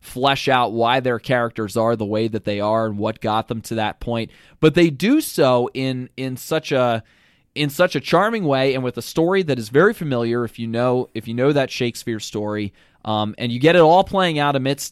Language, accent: English, American